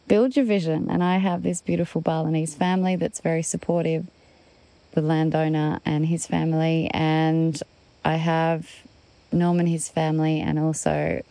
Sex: female